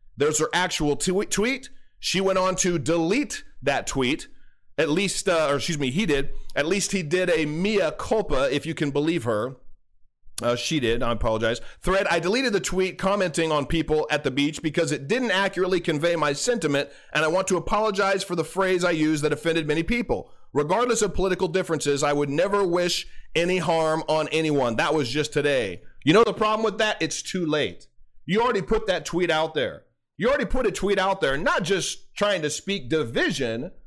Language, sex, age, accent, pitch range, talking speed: English, male, 30-49, American, 150-200 Hz, 200 wpm